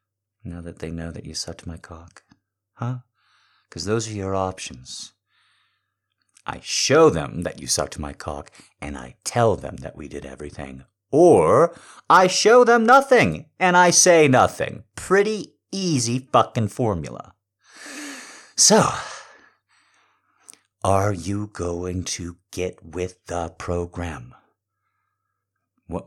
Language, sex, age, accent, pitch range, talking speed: English, male, 50-69, American, 85-125 Hz, 125 wpm